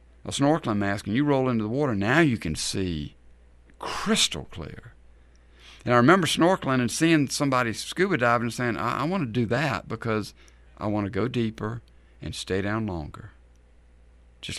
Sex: male